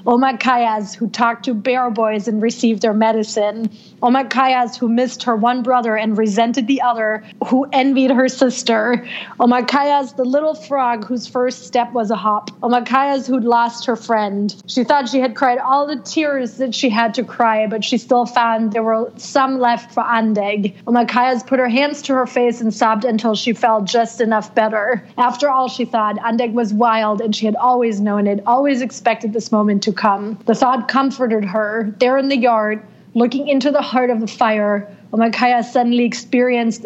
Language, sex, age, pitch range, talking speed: English, female, 30-49, 220-255 Hz, 185 wpm